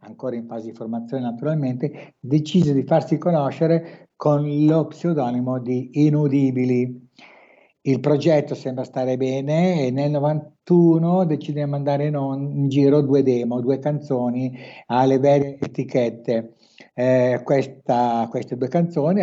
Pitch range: 120-150 Hz